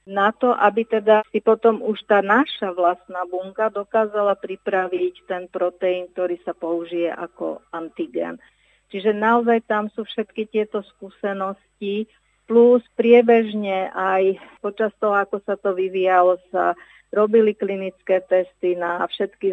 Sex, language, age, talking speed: female, Slovak, 50-69, 130 wpm